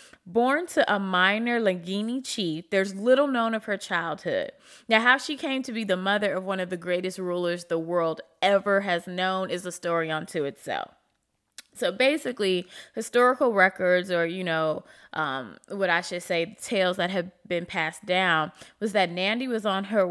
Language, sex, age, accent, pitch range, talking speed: English, female, 20-39, American, 170-225 Hz, 180 wpm